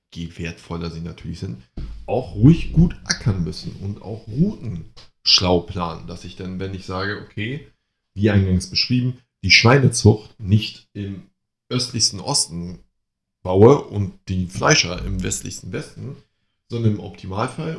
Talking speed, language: 140 wpm, German